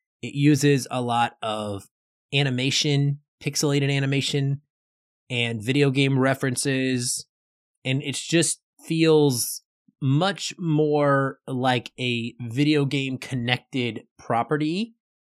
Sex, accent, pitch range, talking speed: male, American, 115-150 Hz, 95 wpm